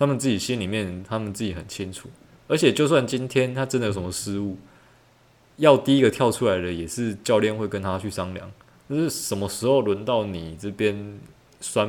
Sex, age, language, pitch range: male, 20-39, Chinese, 95-120 Hz